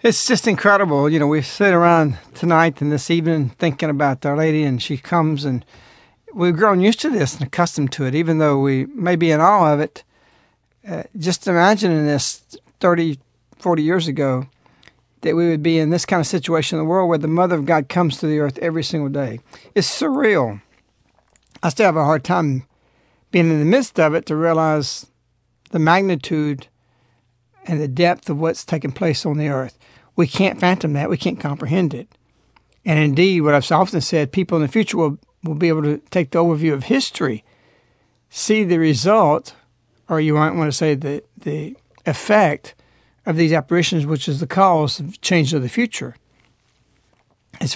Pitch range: 140-175 Hz